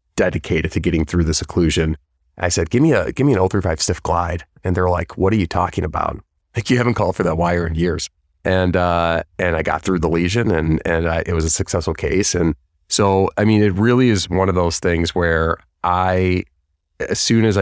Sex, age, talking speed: male, 30-49, 220 wpm